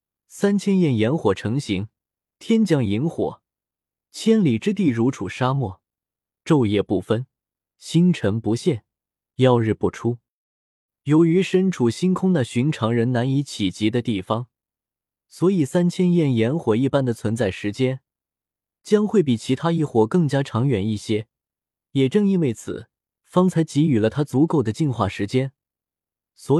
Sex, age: male, 20-39